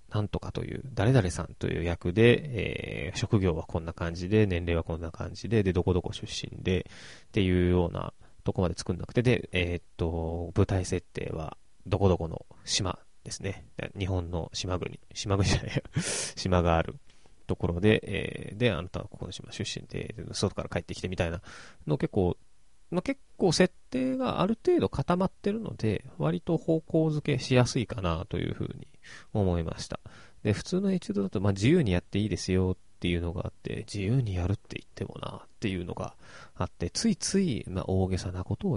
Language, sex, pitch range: Japanese, male, 90-130 Hz